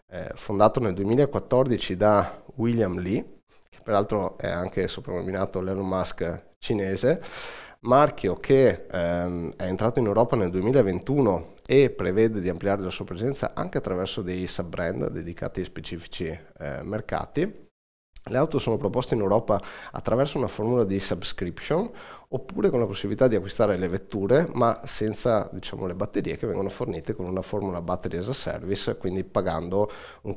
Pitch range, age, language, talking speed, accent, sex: 90-115 Hz, 30-49, Italian, 150 wpm, native, male